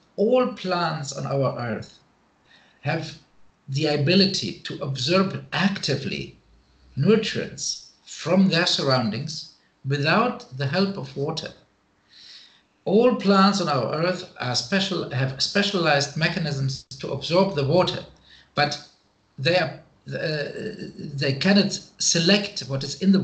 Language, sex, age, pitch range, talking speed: English, male, 50-69, 135-190 Hz, 110 wpm